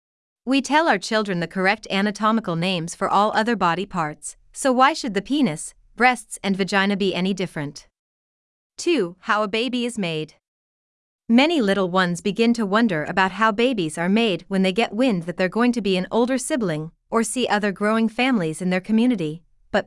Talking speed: 185 wpm